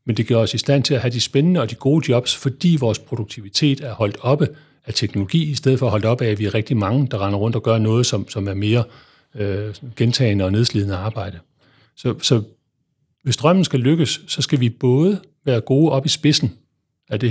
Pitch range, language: 110-140 Hz, Danish